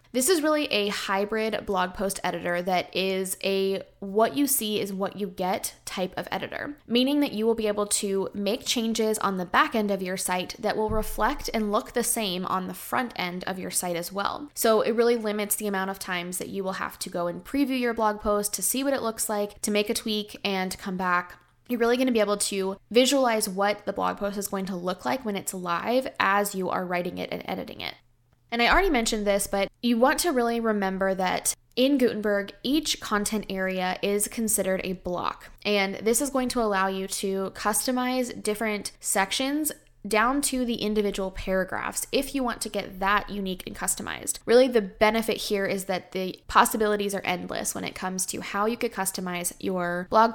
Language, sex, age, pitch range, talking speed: English, female, 20-39, 190-235 Hz, 210 wpm